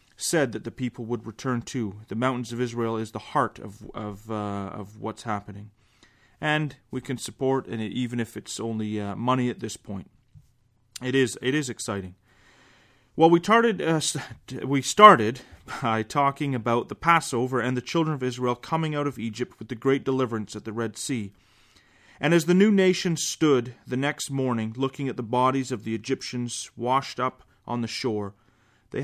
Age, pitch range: 30-49, 110-145 Hz